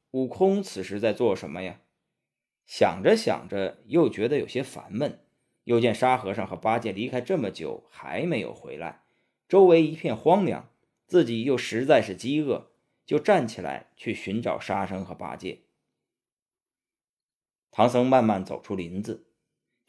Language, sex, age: Chinese, male, 20-39